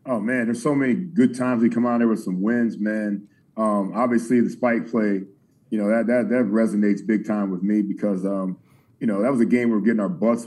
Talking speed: 250 wpm